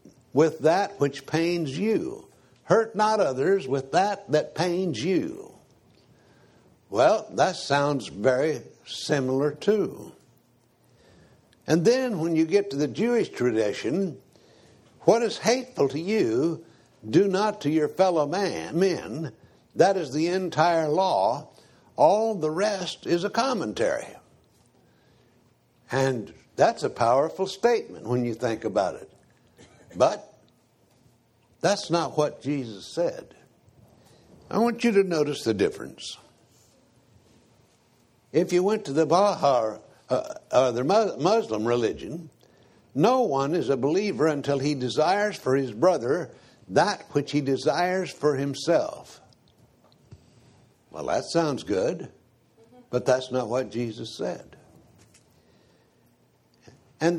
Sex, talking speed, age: male, 120 wpm, 60-79